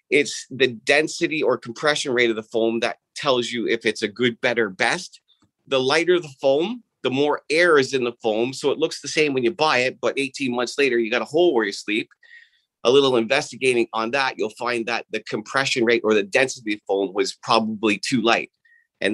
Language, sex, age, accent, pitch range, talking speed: English, male, 30-49, American, 115-150 Hz, 220 wpm